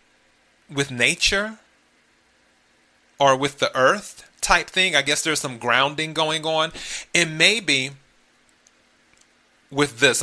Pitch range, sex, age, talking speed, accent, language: 120-155 Hz, male, 30-49, 110 wpm, American, English